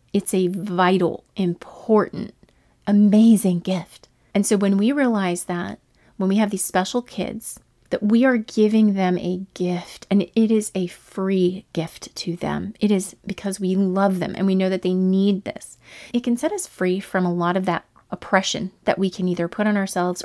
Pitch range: 175-215 Hz